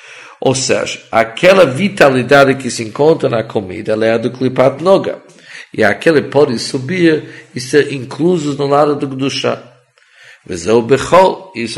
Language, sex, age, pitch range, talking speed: English, male, 50-69, 115-145 Hz, 155 wpm